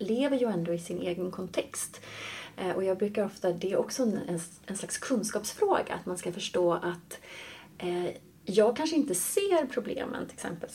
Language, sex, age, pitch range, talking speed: Swedish, female, 30-49, 175-245 Hz, 180 wpm